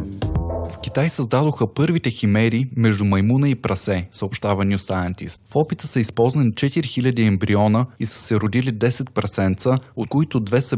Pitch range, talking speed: 105-130 Hz, 150 wpm